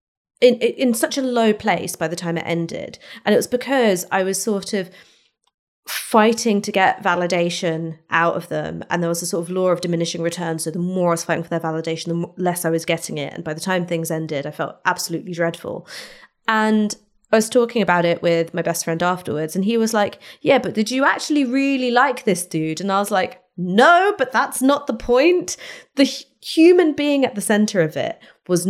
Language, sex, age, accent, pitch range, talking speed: English, female, 30-49, British, 170-220 Hz, 215 wpm